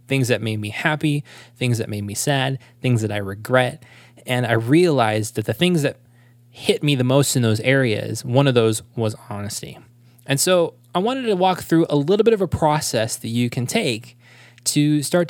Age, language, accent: 20-39, English, American